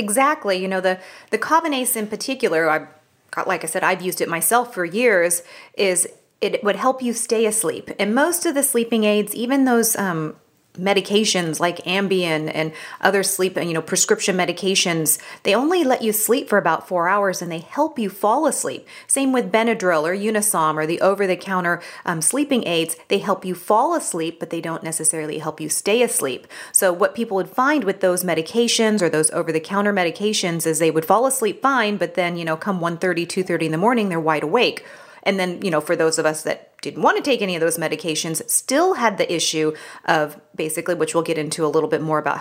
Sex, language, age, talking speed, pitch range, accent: female, English, 30-49, 205 wpm, 160-215 Hz, American